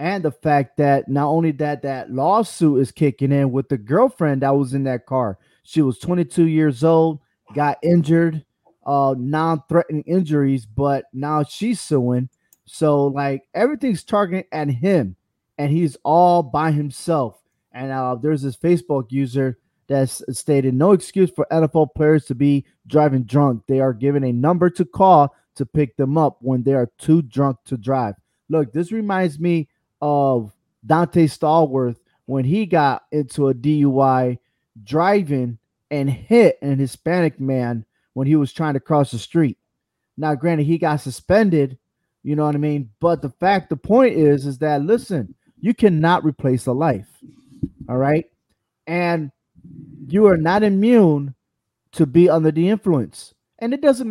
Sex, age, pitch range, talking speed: male, 20-39, 135-170 Hz, 160 wpm